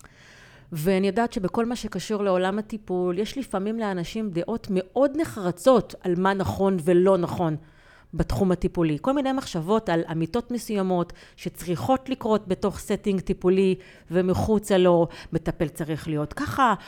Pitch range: 165-220 Hz